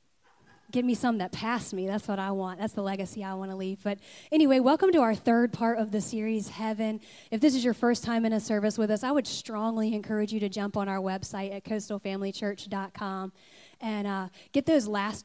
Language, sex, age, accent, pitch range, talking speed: English, female, 20-39, American, 205-235 Hz, 220 wpm